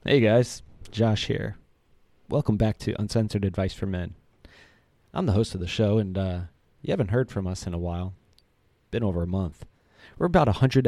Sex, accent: male, American